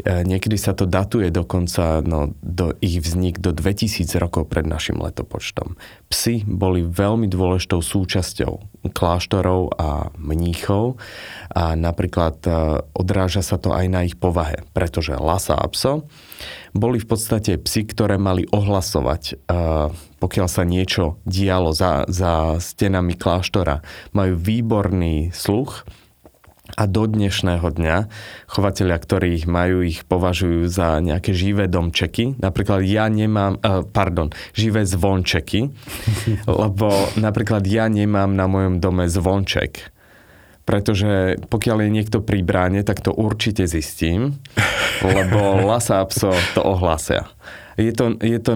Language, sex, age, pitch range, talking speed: Slovak, male, 30-49, 90-105 Hz, 125 wpm